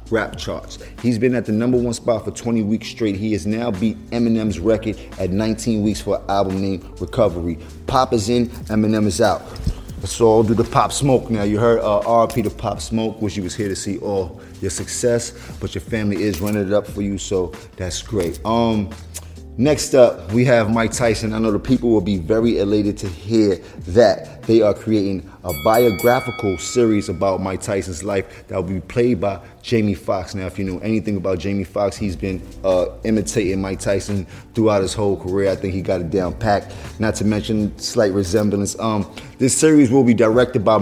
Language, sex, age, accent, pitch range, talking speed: English, male, 30-49, American, 95-115 Hz, 205 wpm